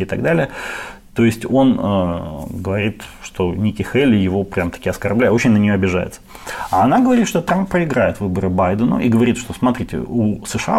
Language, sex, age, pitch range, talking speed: Ukrainian, male, 30-49, 100-130 Hz, 180 wpm